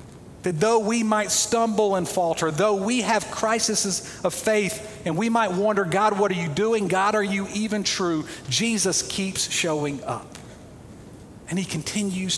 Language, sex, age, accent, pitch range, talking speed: English, male, 40-59, American, 145-185 Hz, 165 wpm